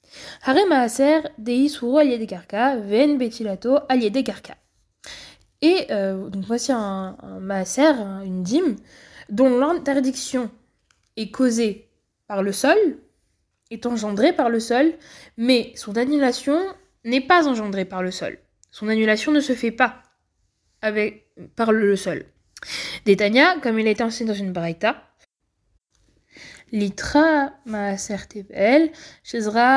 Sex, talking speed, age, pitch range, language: female, 115 wpm, 20-39, 205-270 Hz, French